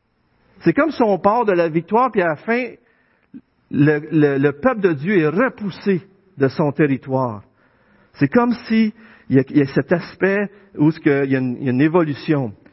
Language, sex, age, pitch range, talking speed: French, male, 50-69, 150-225 Hz, 200 wpm